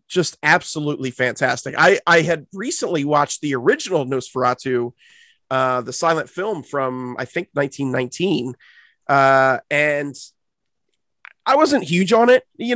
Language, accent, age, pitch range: English, American, 30-49, 130-180 Hz